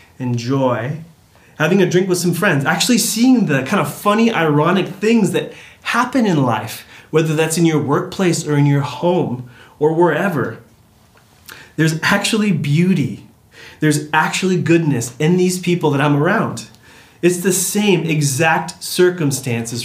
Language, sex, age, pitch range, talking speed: English, male, 30-49, 135-180 Hz, 140 wpm